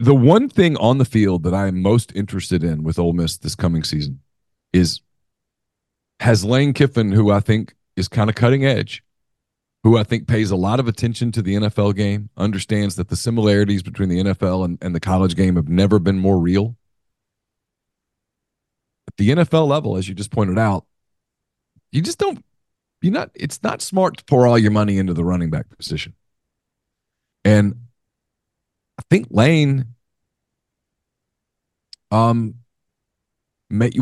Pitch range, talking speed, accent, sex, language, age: 95-130 Hz, 160 wpm, American, male, English, 30-49